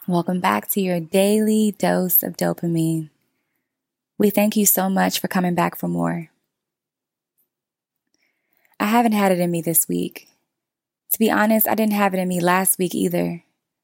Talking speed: 165 wpm